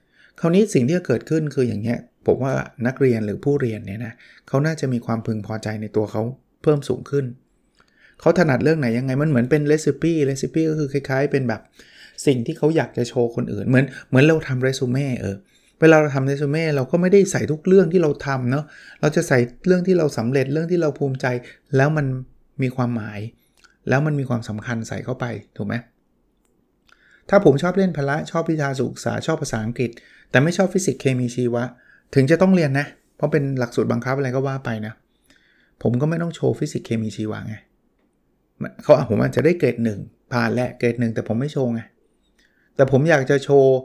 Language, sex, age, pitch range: Thai, male, 20-39, 120-150 Hz